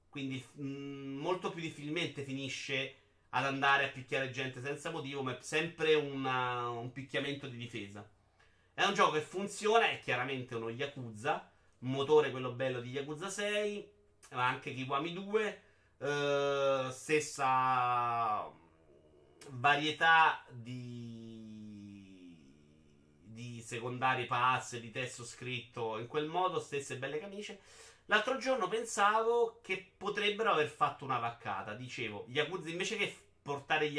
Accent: native